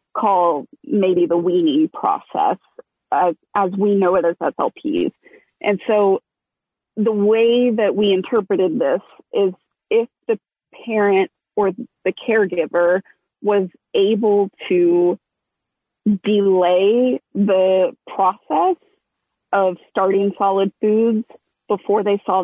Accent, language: American, English